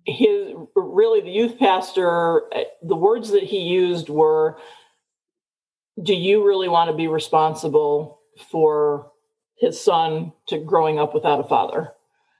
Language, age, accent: English, 40-59, American